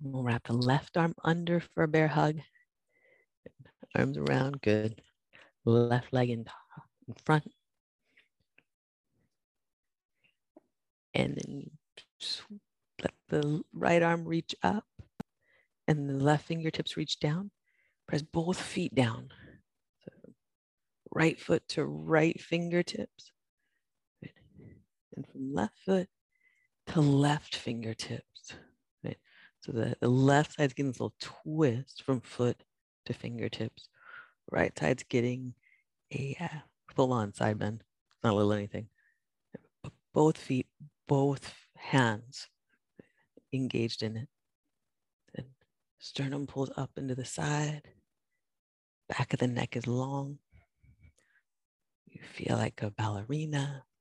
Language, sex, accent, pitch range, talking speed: English, female, American, 120-155 Hz, 110 wpm